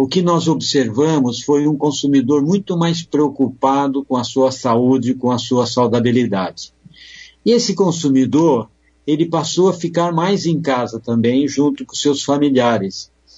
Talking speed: 150 wpm